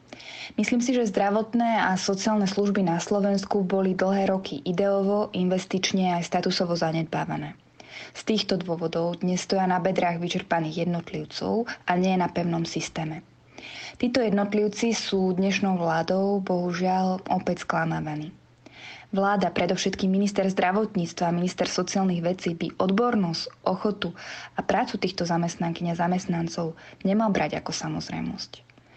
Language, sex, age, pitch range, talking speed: Slovak, female, 20-39, 175-200 Hz, 125 wpm